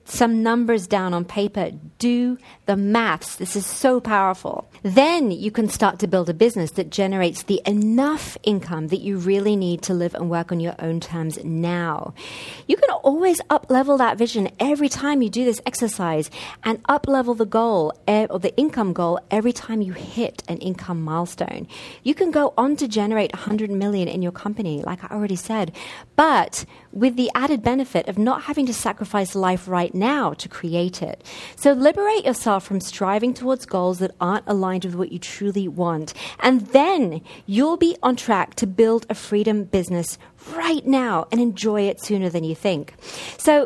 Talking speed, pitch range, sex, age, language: 180 wpm, 180-240 Hz, female, 40-59, English